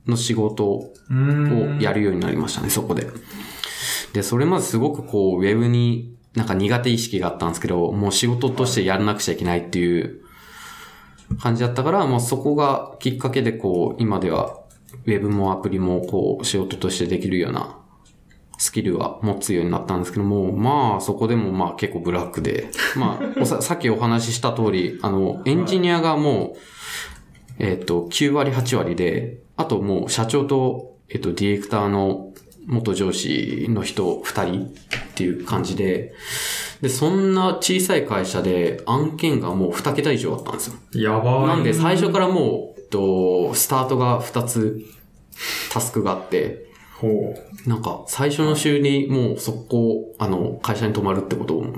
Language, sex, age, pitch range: Japanese, male, 20-39, 100-140 Hz